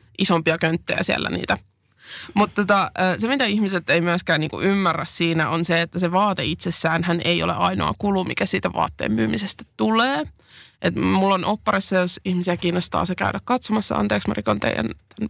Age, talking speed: 20-39, 175 wpm